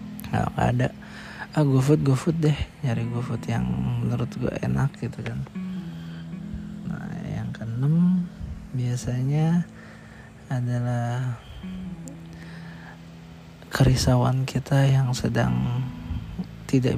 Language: Indonesian